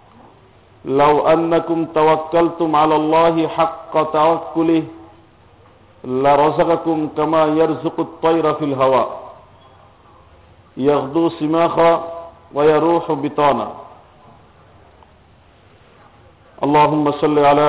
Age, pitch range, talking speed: 50-69, 140-160 Hz, 70 wpm